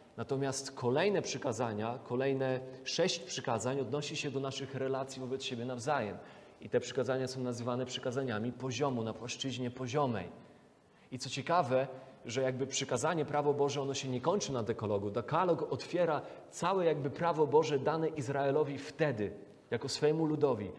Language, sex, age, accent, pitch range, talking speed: Polish, male, 30-49, native, 135-195 Hz, 145 wpm